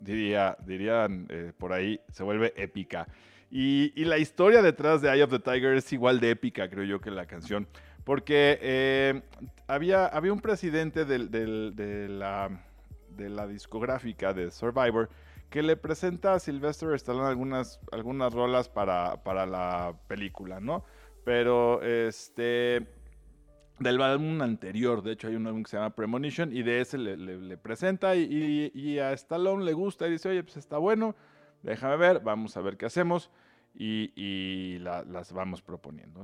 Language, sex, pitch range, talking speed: Spanish, male, 100-140 Hz, 170 wpm